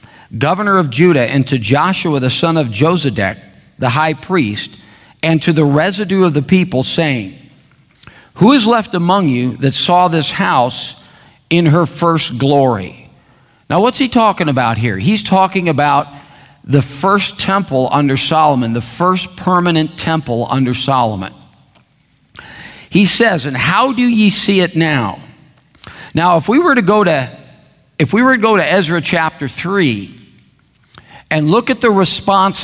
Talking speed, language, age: 155 wpm, English, 50-69